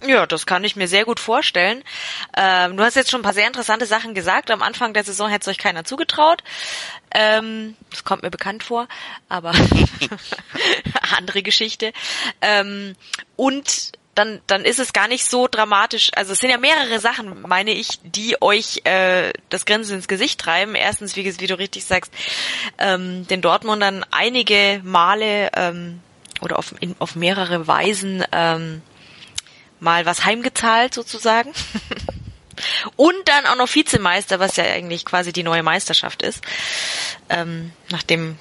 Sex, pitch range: female, 180-235 Hz